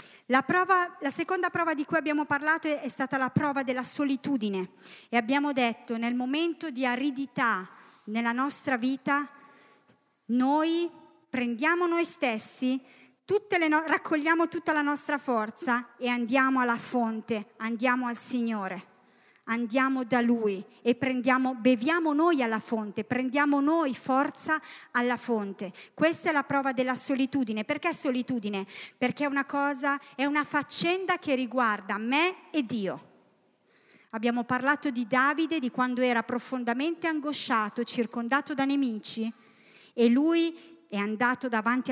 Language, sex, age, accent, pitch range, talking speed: Italian, female, 30-49, native, 235-290 Hz, 135 wpm